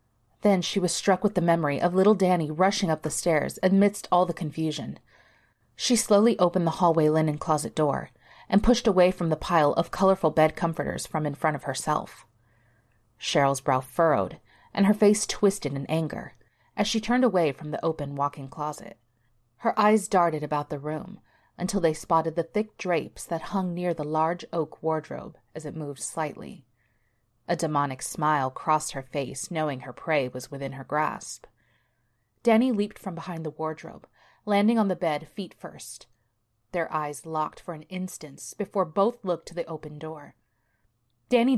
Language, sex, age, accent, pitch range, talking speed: English, female, 30-49, American, 145-190 Hz, 175 wpm